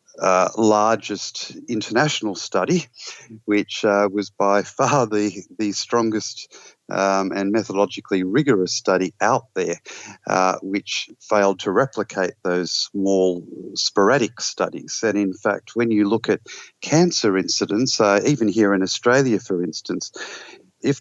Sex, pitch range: male, 95-120 Hz